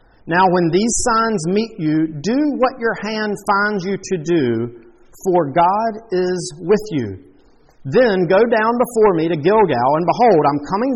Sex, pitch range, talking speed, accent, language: male, 180-230 Hz, 165 wpm, American, English